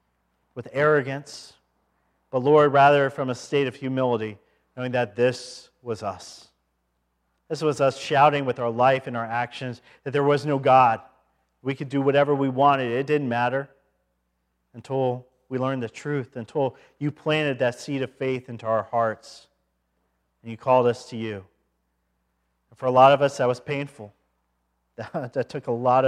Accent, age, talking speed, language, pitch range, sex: American, 40-59, 170 wpm, English, 110-145 Hz, male